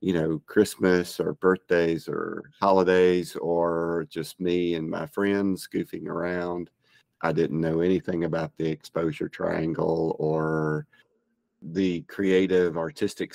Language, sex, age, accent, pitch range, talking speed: English, male, 50-69, American, 80-90 Hz, 120 wpm